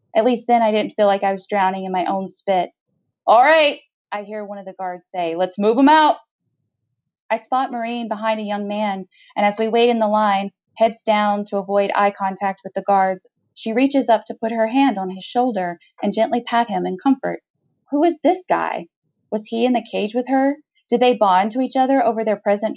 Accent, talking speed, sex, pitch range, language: American, 225 wpm, female, 190-225 Hz, English